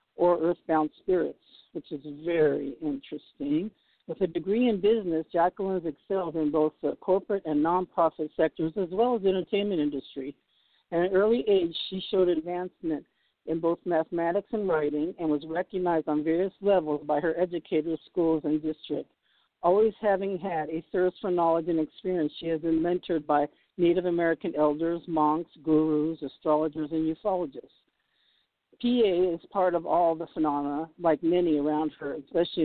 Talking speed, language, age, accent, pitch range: 160 wpm, English, 50-69, American, 155-185 Hz